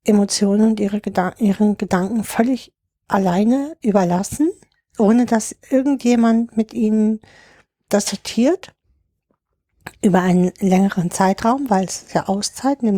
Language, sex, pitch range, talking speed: German, female, 195-230 Hz, 120 wpm